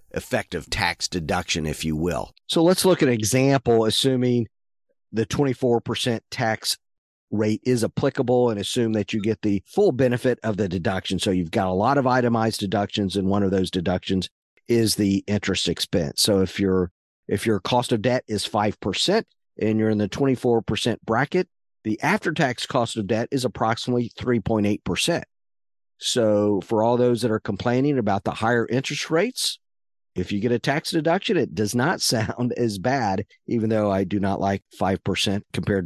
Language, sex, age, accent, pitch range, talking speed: English, male, 50-69, American, 95-125 Hz, 175 wpm